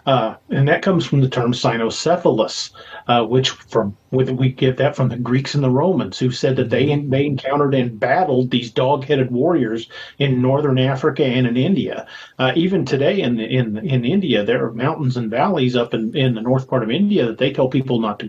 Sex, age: male, 40-59